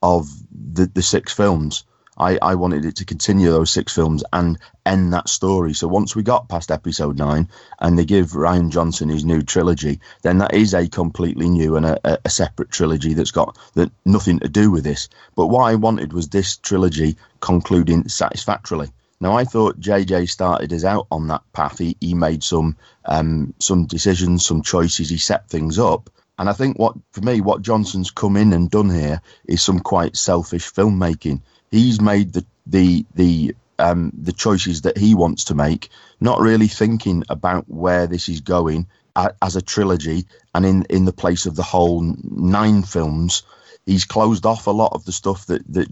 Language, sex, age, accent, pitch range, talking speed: English, male, 30-49, British, 85-100 Hz, 190 wpm